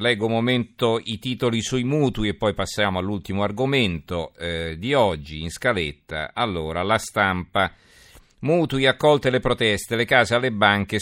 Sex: male